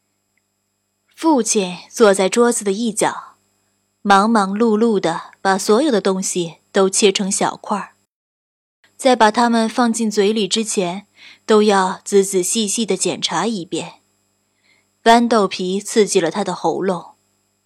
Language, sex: Chinese, female